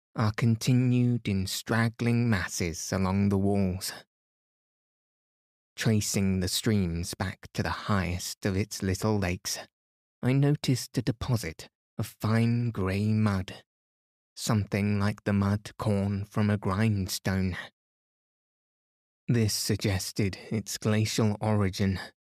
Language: English